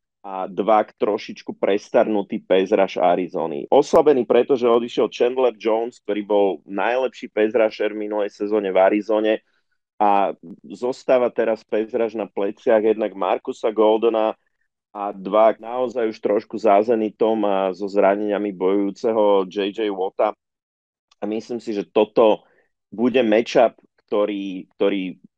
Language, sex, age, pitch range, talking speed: Slovak, male, 30-49, 100-115 Hz, 115 wpm